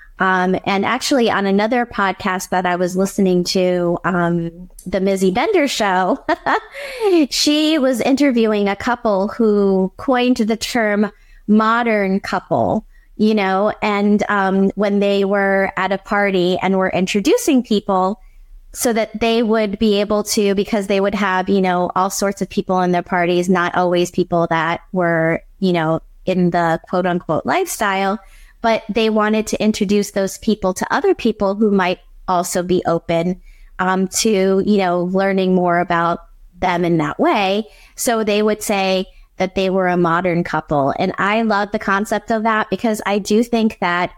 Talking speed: 165 wpm